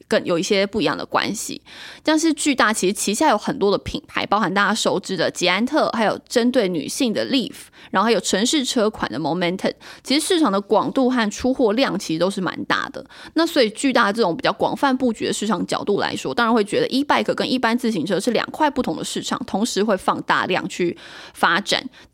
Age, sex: 20-39, female